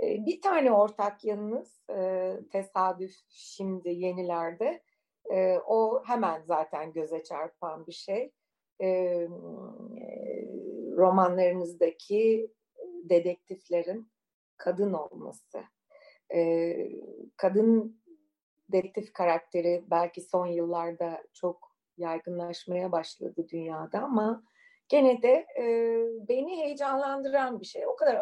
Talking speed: 80 wpm